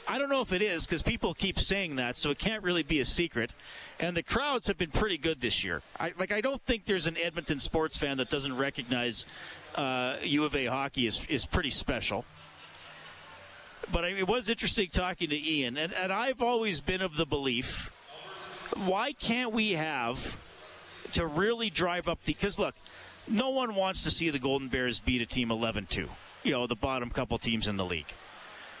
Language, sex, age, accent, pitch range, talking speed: English, male, 40-59, American, 120-175 Hz, 195 wpm